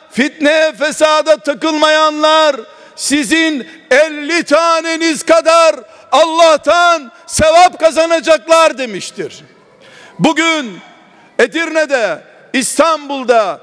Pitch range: 255-310 Hz